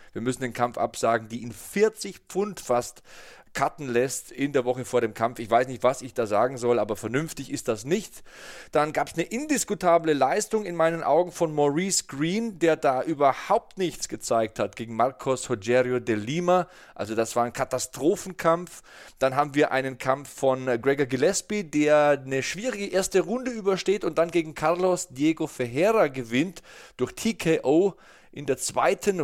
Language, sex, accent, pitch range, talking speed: German, male, German, 130-180 Hz, 175 wpm